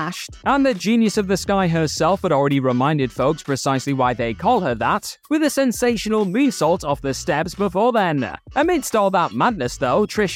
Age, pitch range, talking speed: 20-39, 145-215 Hz, 185 wpm